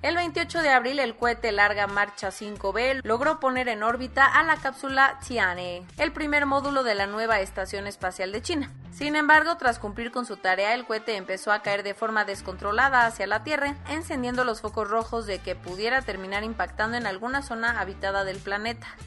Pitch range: 205-270 Hz